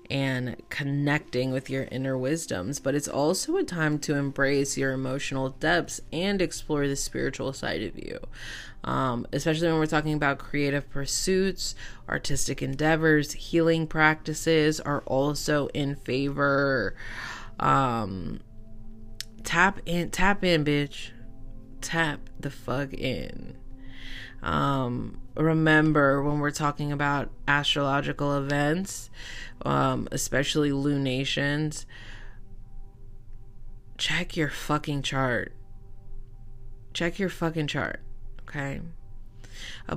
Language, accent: English, American